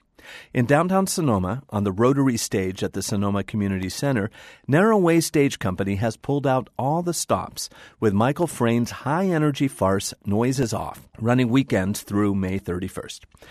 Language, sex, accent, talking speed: English, male, American, 145 wpm